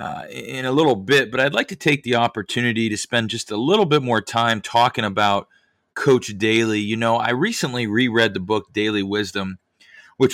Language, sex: English, male